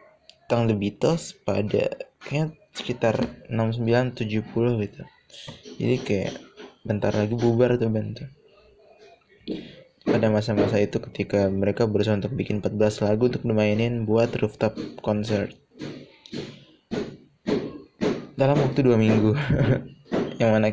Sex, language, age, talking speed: male, Indonesian, 20-39, 105 wpm